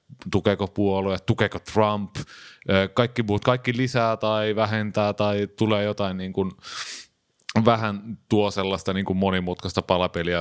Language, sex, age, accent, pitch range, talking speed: Finnish, male, 30-49, native, 95-110 Hz, 125 wpm